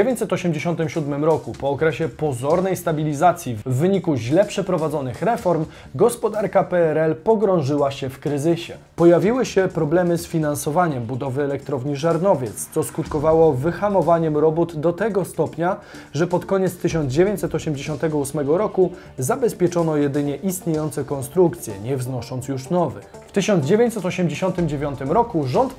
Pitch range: 140-180 Hz